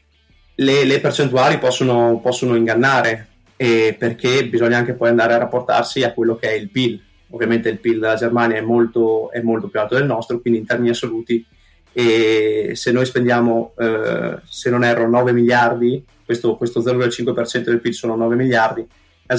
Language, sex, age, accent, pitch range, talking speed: Italian, male, 20-39, native, 115-120 Hz, 175 wpm